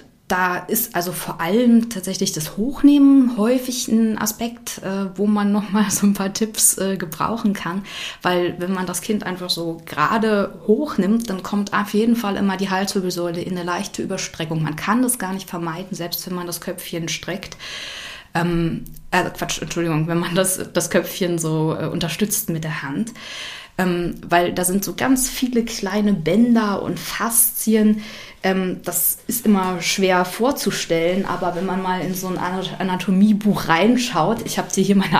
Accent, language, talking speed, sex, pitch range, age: German, German, 170 wpm, female, 175-210 Hz, 20-39